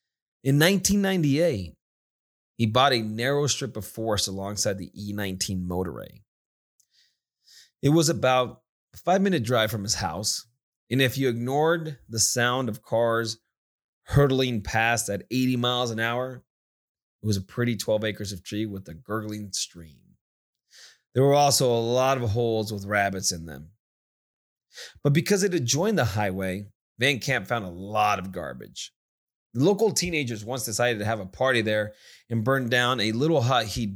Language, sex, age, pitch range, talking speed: English, male, 30-49, 105-135 Hz, 155 wpm